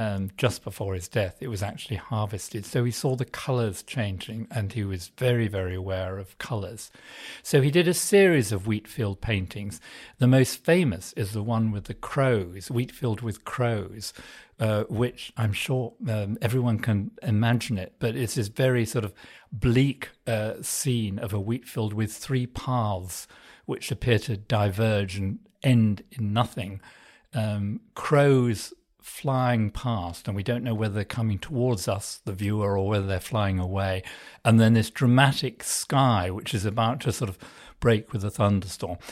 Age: 50-69